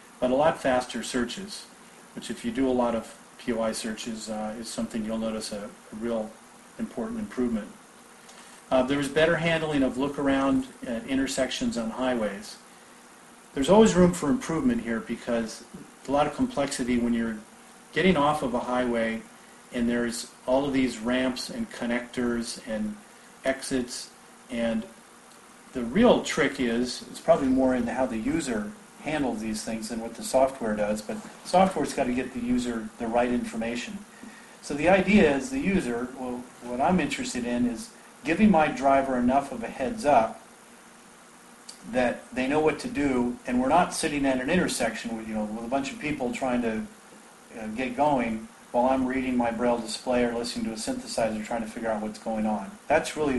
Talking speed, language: 175 wpm, English